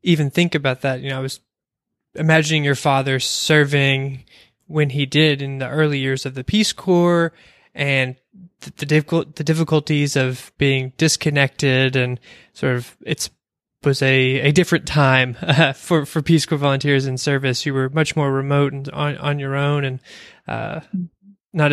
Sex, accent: male, American